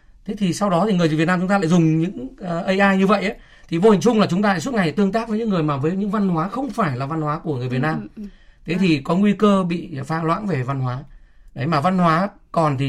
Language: Vietnamese